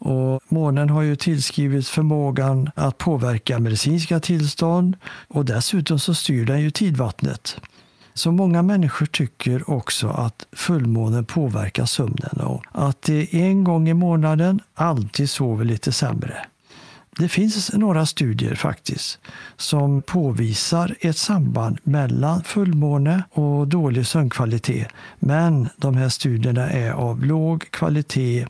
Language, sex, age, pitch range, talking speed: Swedish, male, 60-79, 125-165 Hz, 125 wpm